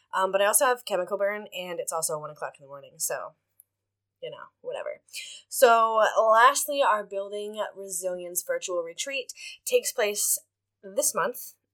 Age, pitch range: 10-29, 175-260 Hz